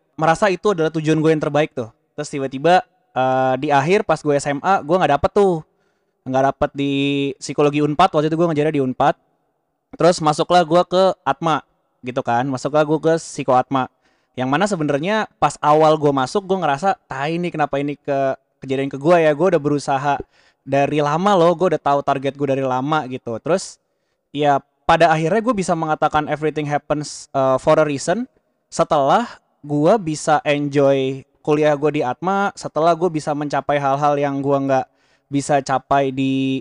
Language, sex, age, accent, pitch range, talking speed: Indonesian, male, 20-39, native, 140-165 Hz, 175 wpm